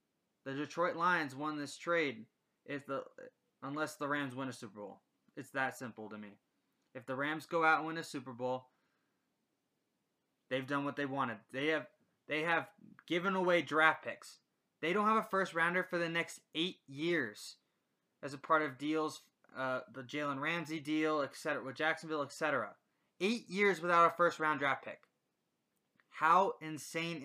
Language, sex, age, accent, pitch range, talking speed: English, male, 20-39, American, 135-165 Hz, 170 wpm